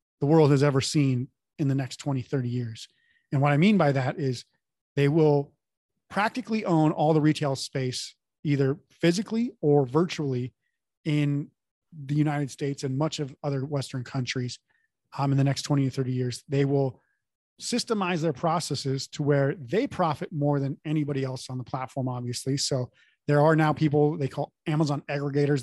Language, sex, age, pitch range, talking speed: English, male, 30-49, 135-160 Hz, 175 wpm